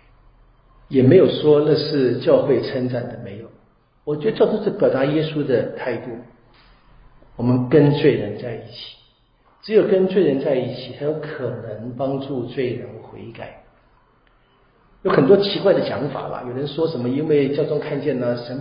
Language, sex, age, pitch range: Chinese, male, 50-69, 125-150 Hz